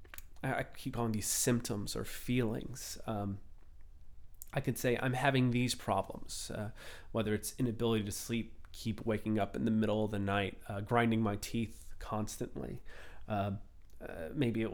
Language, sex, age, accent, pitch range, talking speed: English, male, 30-49, American, 100-145 Hz, 160 wpm